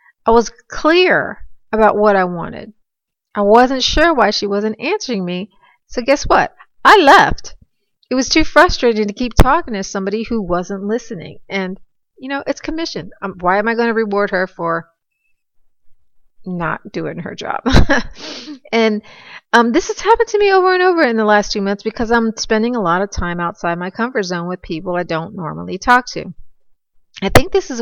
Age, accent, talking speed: 30-49, American, 185 wpm